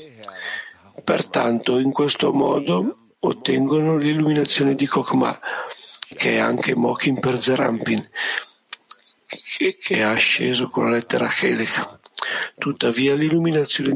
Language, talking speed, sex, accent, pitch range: Italian, 100 wpm, male, native, 125-145 Hz